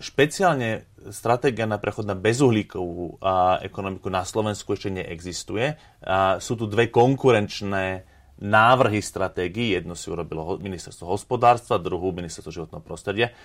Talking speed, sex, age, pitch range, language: 115 wpm, male, 30-49, 95-120 Hz, Slovak